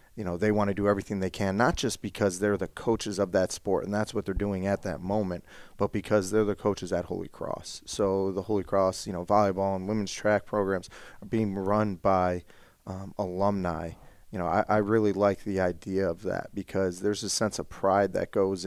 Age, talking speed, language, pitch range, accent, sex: 30-49, 220 wpm, English, 95-105 Hz, American, male